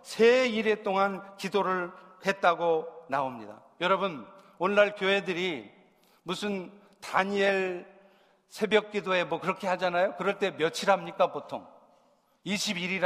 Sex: male